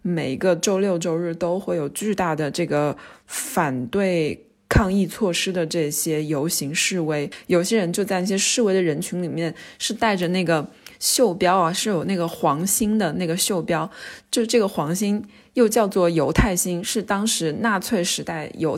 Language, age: Chinese, 20-39